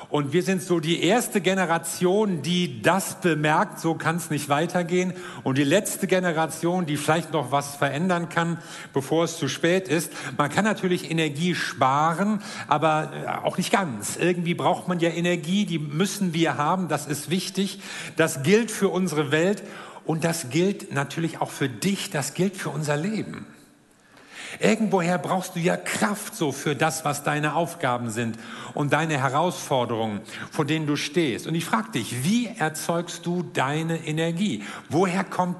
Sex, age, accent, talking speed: male, 50-69, German, 165 wpm